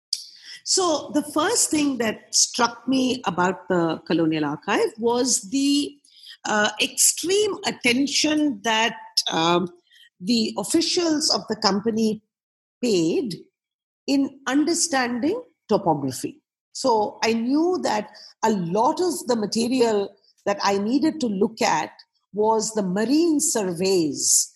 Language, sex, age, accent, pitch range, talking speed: English, female, 50-69, Indian, 200-280 Hz, 110 wpm